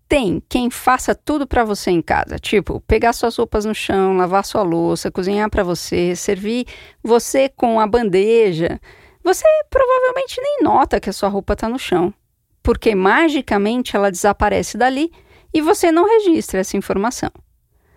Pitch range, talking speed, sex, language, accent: 200-305 Hz, 155 wpm, female, Portuguese, Brazilian